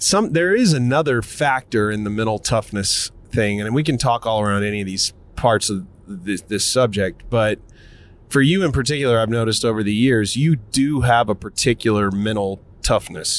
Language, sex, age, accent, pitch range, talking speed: English, male, 30-49, American, 100-130 Hz, 185 wpm